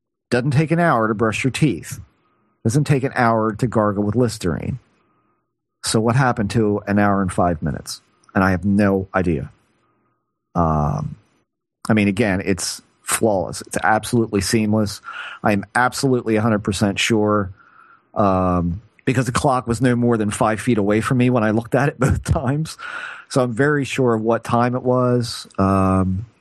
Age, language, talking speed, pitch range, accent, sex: 40-59, English, 165 wpm, 100-125 Hz, American, male